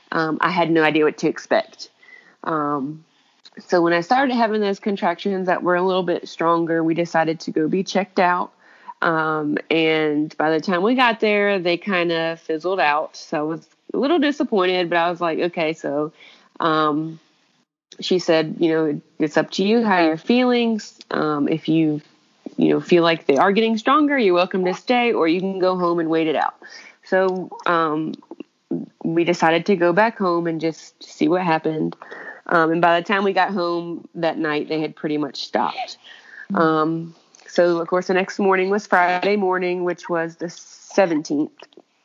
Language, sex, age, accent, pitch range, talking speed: English, female, 20-39, American, 160-200 Hz, 190 wpm